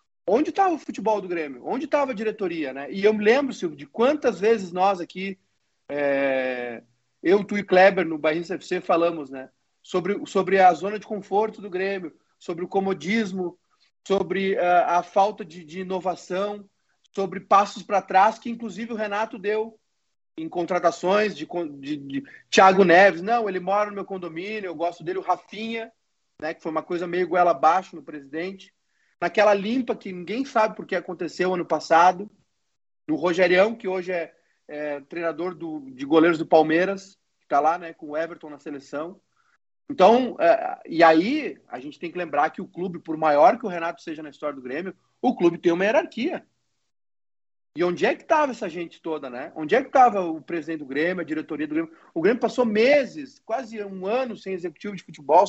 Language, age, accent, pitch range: Portuguese, 30-49, Brazilian, 165-210 Hz